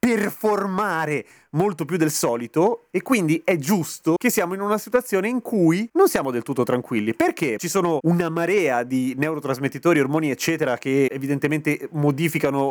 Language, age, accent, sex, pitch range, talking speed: Italian, 30-49, native, male, 135-185 Hz, 155 wpm